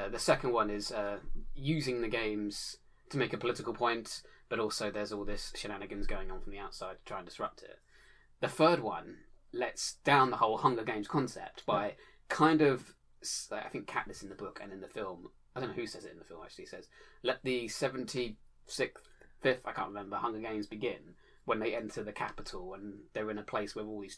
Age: 20-39